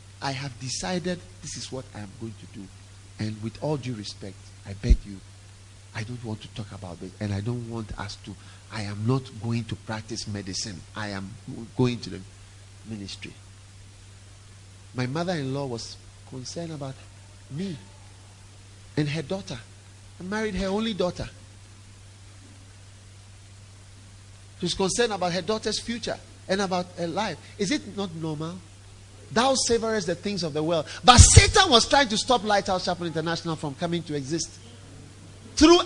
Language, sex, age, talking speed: English, male, 50-69, 160 wpm